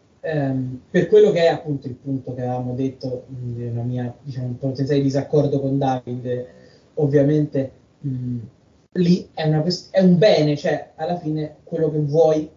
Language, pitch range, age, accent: Italian, 135-155 Hz, 20-39, native